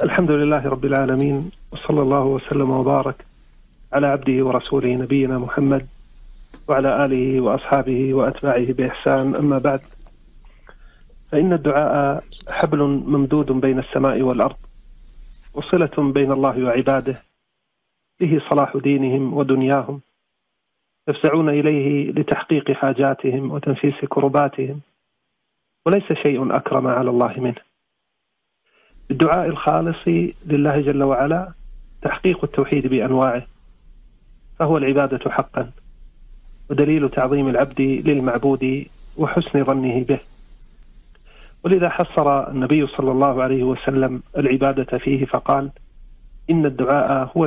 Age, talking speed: 40-59, 100 wpm